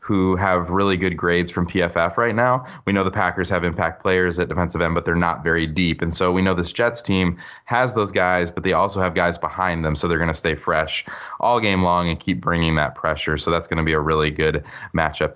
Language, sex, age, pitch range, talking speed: English, male, 20-39, 85-105 Hz, 250 wpm